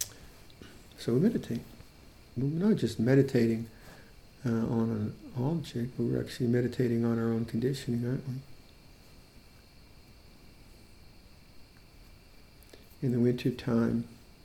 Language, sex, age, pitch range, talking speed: English, male, 50-69, 115-125 Hz, 100 wpm